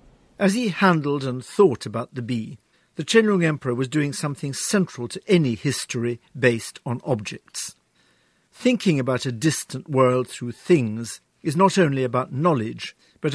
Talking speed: 155 wpm